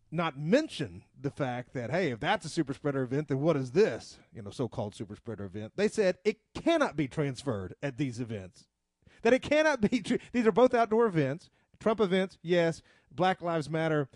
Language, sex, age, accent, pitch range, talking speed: English, male, 40-59, American, 145-195 Hz, 205 wpm